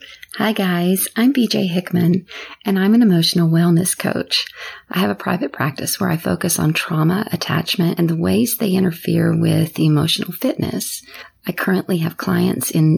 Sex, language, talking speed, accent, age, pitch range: female, English, 160 wpm, American, 40-59, 170-205 Hz